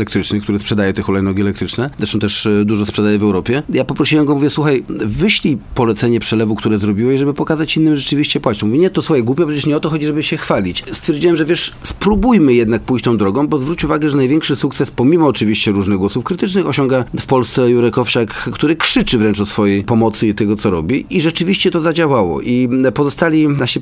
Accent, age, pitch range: native, 40-59, 110-140 Hz